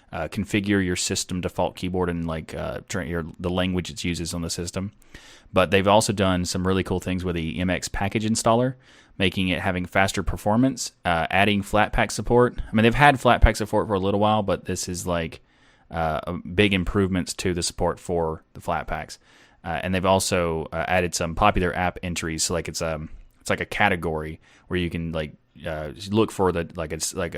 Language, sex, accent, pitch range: English, male, American, 85-105 Hz